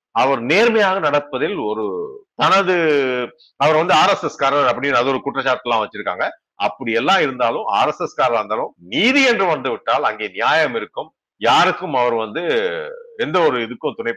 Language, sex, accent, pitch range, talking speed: Tamil, male, native, 145-220 Hz, 140 wpm